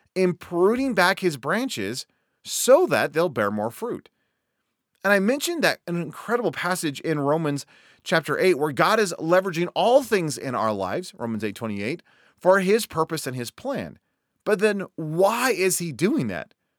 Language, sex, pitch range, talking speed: English, male, 140-205 Hz, 160 wpm